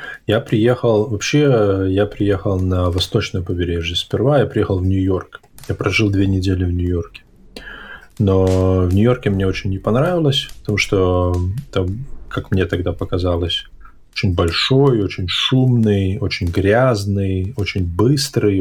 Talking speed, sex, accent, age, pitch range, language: 130 wpm, male, native, 20-39, 90-105 Hz, Russian